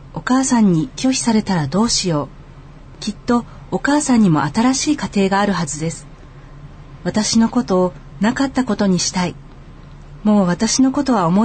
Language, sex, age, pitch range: Japanese, female, 40-59, 145-235 Hz